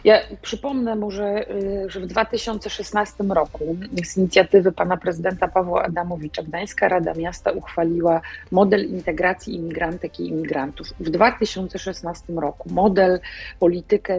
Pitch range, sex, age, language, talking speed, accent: 165-195 Hz, female, 40-59, Polish, 115 wpm, native